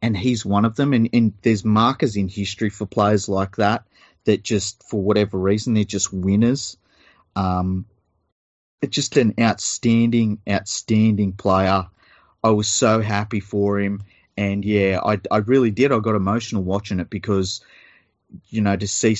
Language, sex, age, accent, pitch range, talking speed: English, male, 30-49, Australian, 95-110 Hz, 165 wpm